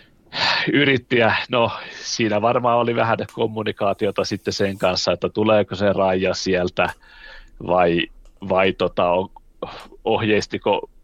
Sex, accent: male, native